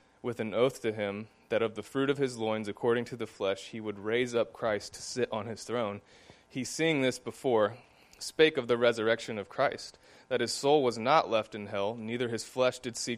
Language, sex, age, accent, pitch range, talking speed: English, male, 20-39, American, 105-125 Hz, 225 wpm